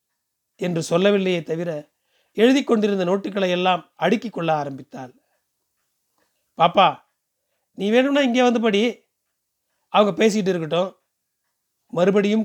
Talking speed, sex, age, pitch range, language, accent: 90 wpm, male, 40-59, 170-220 Hz, Tamil, native